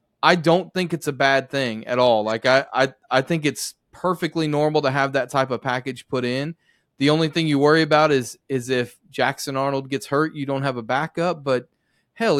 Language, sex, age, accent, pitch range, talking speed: English, male, 30-49, American, 130-165 Hz, 220 wpm